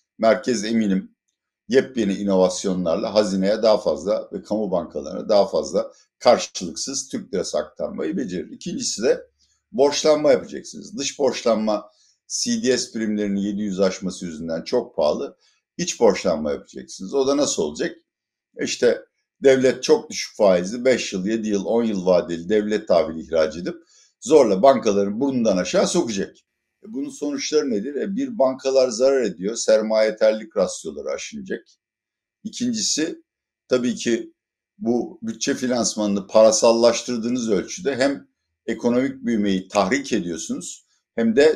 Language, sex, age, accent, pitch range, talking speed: Turkish, male, 60-79, native, 105-140 Hz, 125 wpm